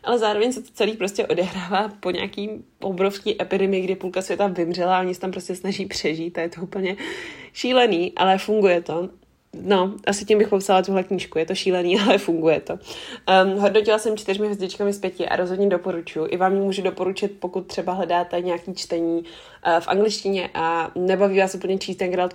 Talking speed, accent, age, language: 190 wpm, native, 20-39, Czech